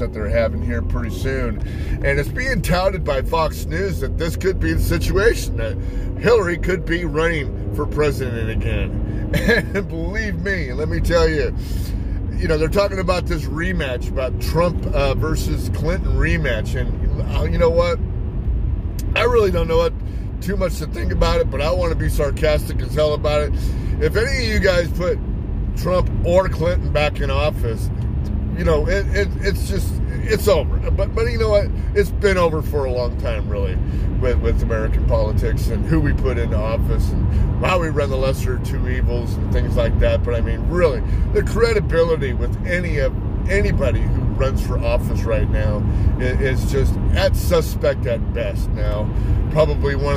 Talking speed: 180 wpm